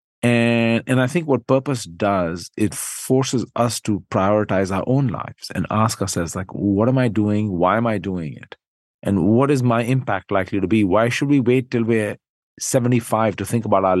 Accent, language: Indian, English